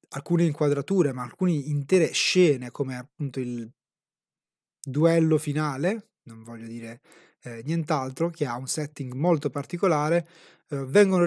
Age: 20-39